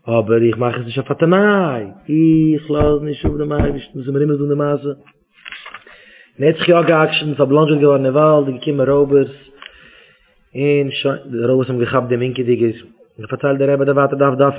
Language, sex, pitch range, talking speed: English, male, 140-170 Hz, 160 wpm